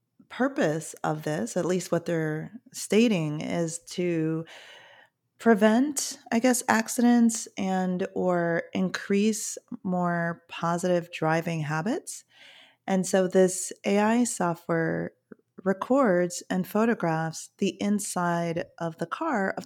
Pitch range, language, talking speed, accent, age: 165-215 Hz, English, 105 wpm, American, 30-49